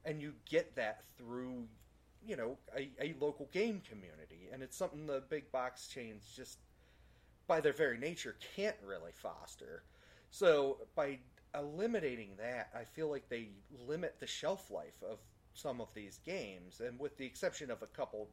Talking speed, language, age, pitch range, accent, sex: 165 wpm, English, 30-49, 100-165 Hz, American, male